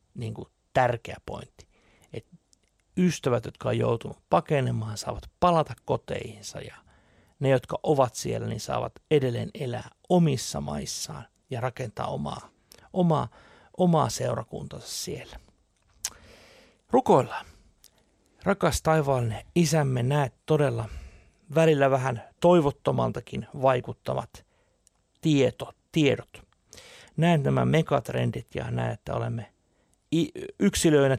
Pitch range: 115-160 Hz